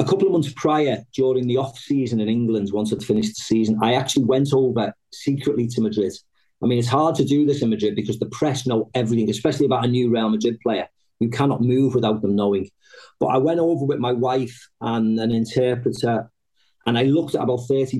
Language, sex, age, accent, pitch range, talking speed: English, male, 40-59, British, 115-135 Hz, 220 wpm